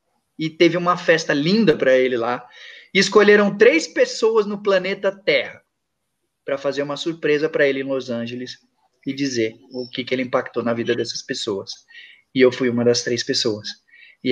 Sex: male